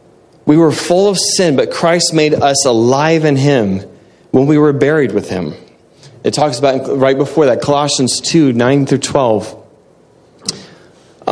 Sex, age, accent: male, 30-49, American